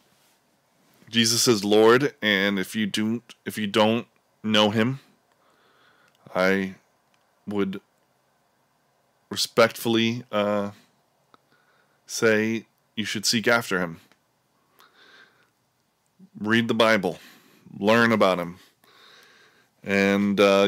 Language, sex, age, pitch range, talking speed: English, male, 20-39, 95-110 Hz, 85 wpm